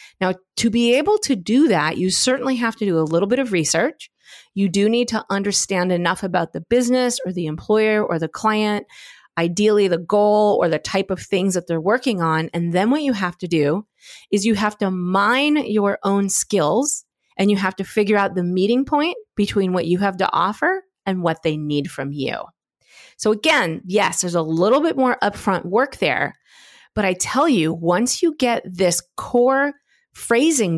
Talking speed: 195 wpm